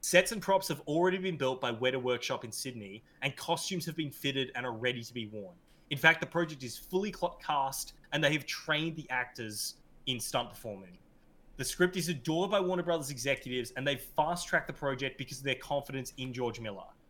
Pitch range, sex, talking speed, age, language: 125-165 Hz, male, 205 wpm, 20-39, English